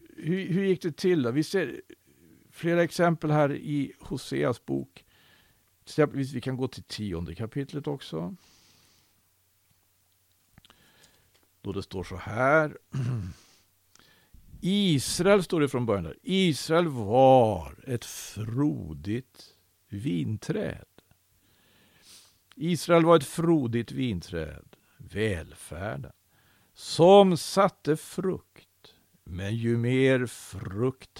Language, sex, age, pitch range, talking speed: Swedish, male, 50-69, 95-150 Hz, 100 wpm